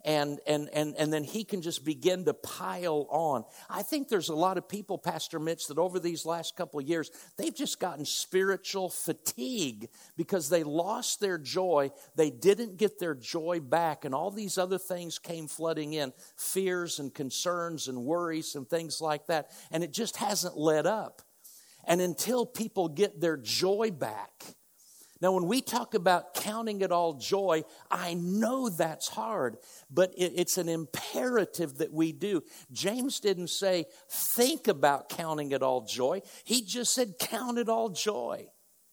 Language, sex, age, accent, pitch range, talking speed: English, male, 50-69, American, 160-200 Hz, 170 wpm